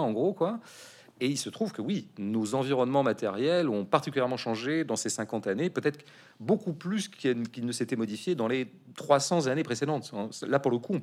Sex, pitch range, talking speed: male, 110-155 Hz, 195 wpm